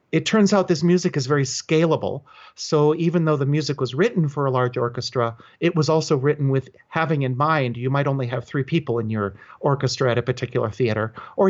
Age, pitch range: 40-59, 120-150 Hz